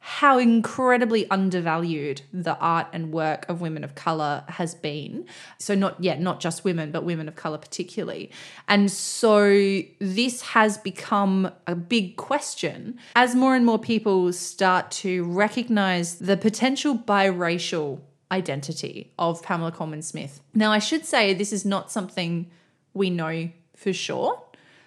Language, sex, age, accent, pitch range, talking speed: English, female, 20-39, Australian, 175-245 Hz, 140 wpm